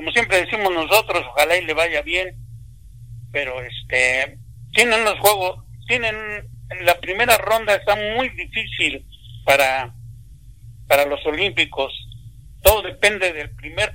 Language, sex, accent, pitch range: Spanish, male, Mexican, 115-190 Hz